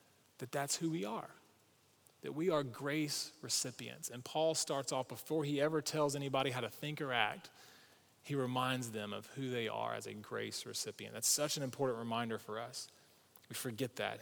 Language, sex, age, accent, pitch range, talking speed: English, male, 30-49, American, 125-155 Hz, 190 wpm